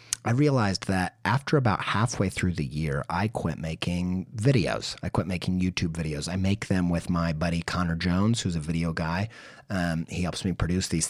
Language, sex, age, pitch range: English, male, 30-49, 90-125 Hz